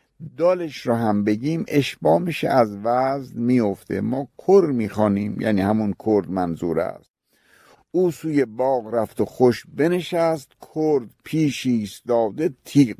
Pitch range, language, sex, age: 105-145 Hz, Persian, male, 50-69